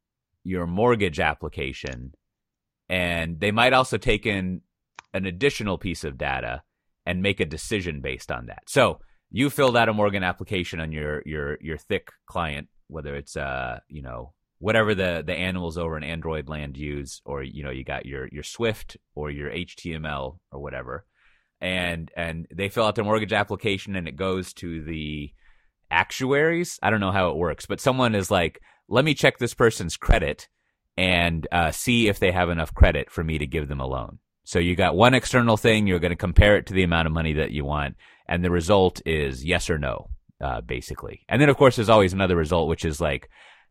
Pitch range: 80-105 Hz